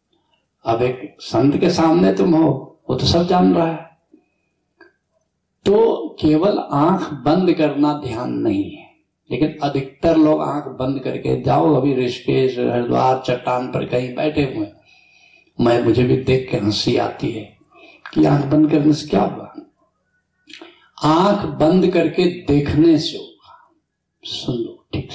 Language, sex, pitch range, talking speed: Hindi, male, 145-230 Hz, 145 wpm